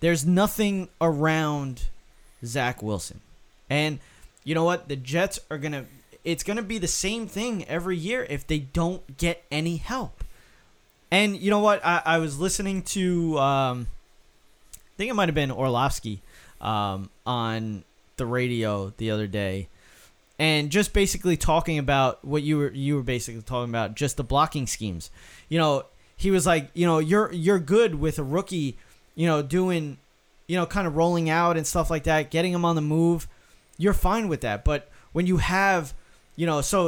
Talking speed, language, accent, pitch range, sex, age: 180 wpm, English, American, 125-175 Hz, male, 20-39